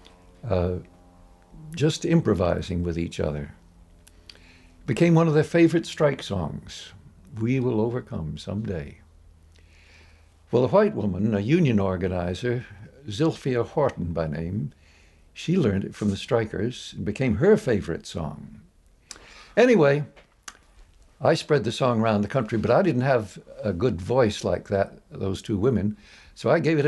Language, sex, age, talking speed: English, male, 60-79, 145 wpm